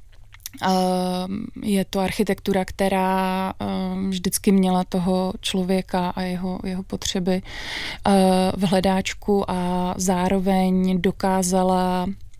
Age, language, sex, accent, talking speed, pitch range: 20-39, Czech, female, native, 80 wpm, 180-195 Hz